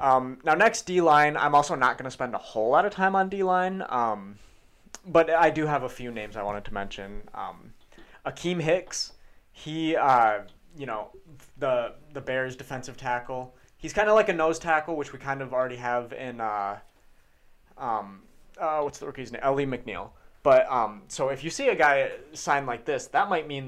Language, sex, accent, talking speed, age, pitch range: English, male, American, 200 wpm, 20-39, 110-150 Hz